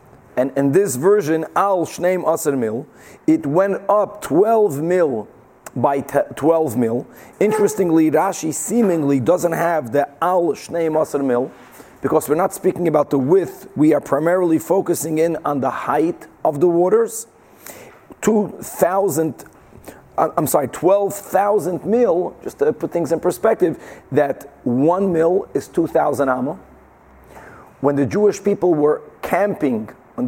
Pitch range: 140-180 Hz